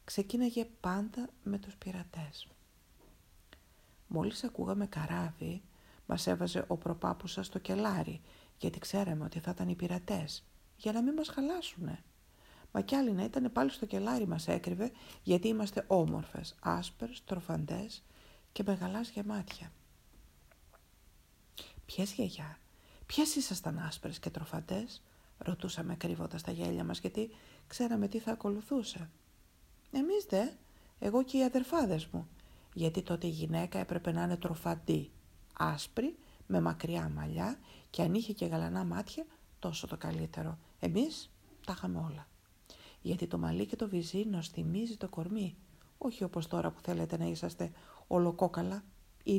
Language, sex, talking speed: Greek, female, 135 wpm